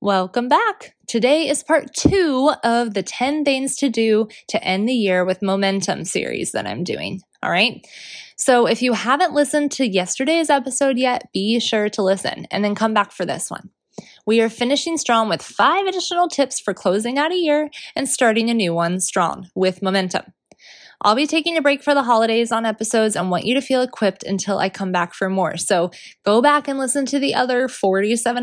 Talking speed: 205 wpm